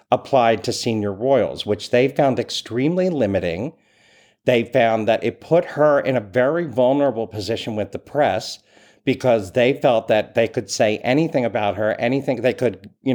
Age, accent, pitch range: 50-69, American, 115-145 Hz